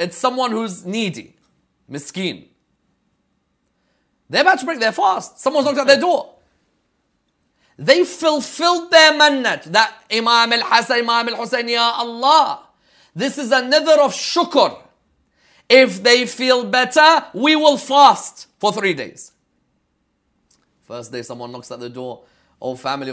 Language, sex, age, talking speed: English, male, 30-49, 135 wpm